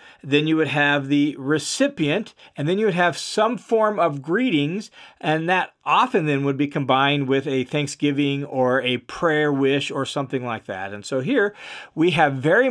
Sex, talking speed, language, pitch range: male, 185 wpm, English, 130-180 Hz